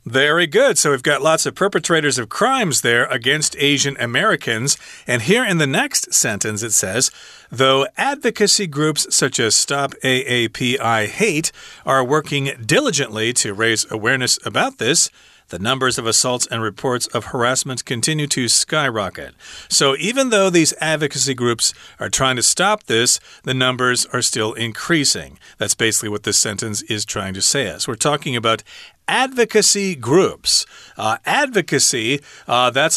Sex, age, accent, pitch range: male, 40-59, American, 115-140 Hz